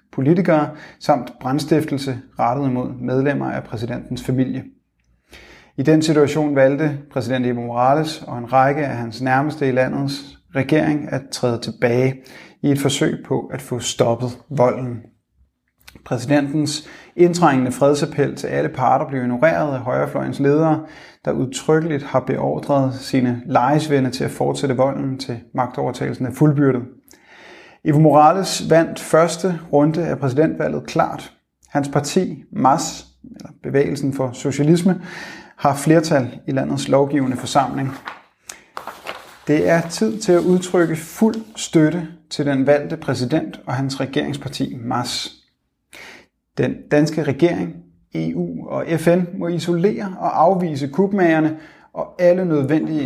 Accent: native